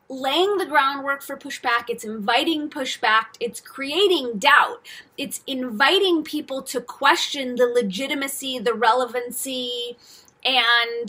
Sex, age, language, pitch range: female, 20-39, English, 240-310 Hz